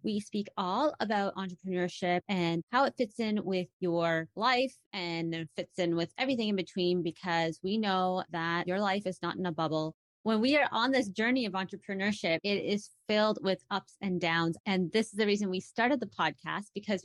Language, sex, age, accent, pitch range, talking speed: English, female, 30-49, American, 175-215 Hz, 195 wpm